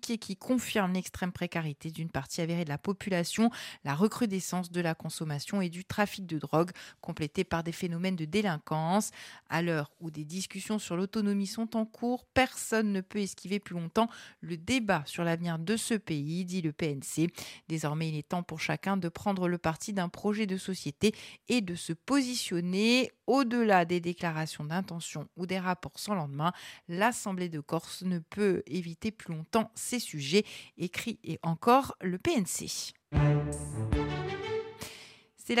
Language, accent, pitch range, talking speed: French, French, 165-215 Hz, 160 wpm